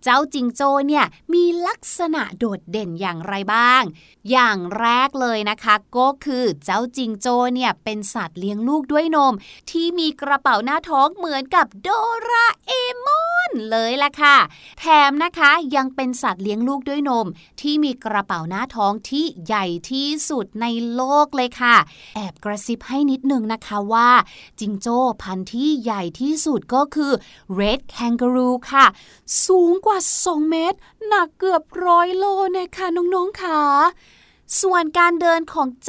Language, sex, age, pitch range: Thai, female, 20-39, 235-320 Hz